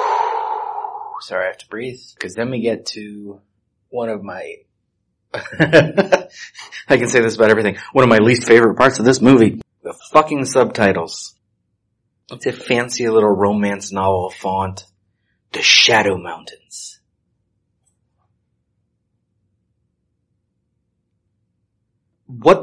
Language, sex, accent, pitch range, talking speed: English, male, American, 100-120 Hz, 110 wpm